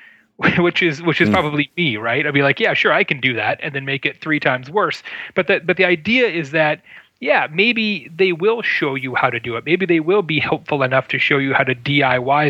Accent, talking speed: American, 250 wpm